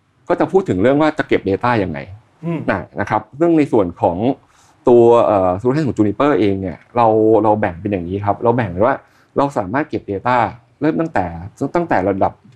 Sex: male